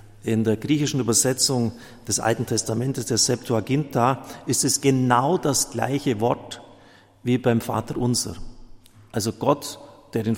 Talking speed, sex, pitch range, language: 135 wpm, male, 105-135 Hz, German